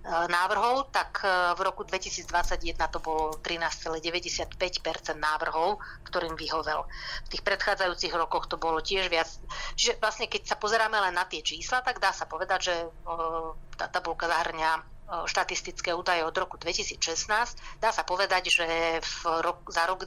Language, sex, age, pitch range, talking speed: Slovak, female, 30-49, 165-195 Hz, 145 wpm